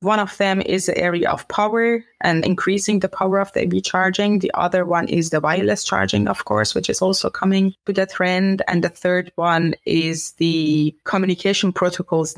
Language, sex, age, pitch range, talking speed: English, female, 20-39, 175-205 Hz, 190 wpm